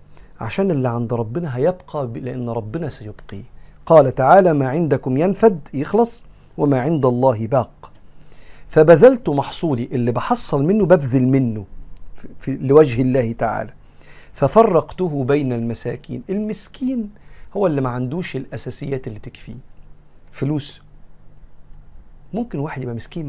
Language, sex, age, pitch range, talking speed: Arabic, male, 40-59, 120-160 Hz, 115 wpm